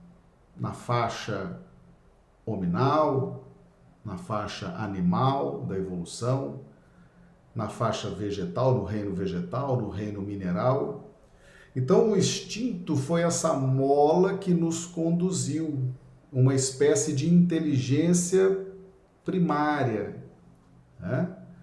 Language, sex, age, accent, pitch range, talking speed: Portuguese, male, 50-69, Brazilian, 125-180 Hz, 90 wpm